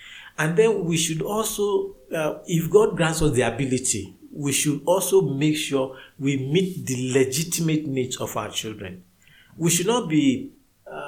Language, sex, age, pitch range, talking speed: English, male, 50-69, 110-155 Hz, 160 wpm